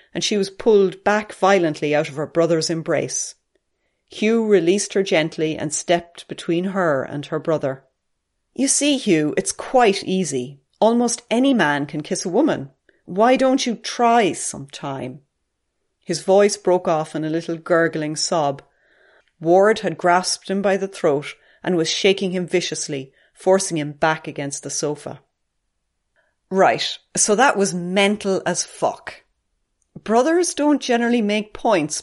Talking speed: 150 wpm